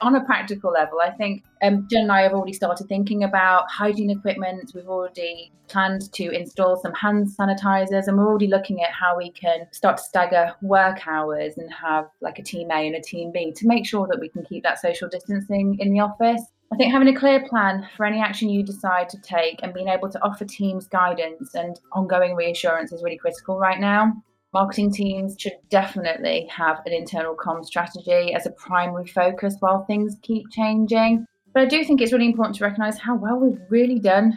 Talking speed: 210 wpm